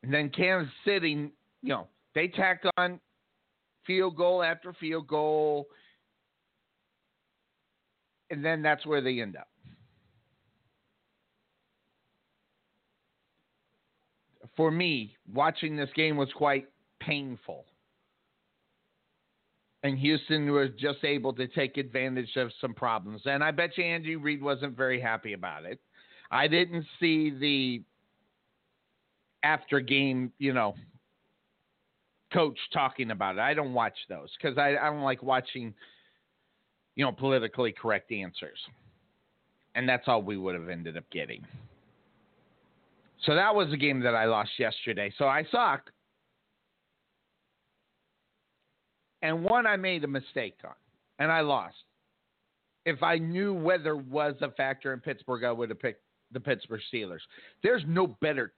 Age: 50-69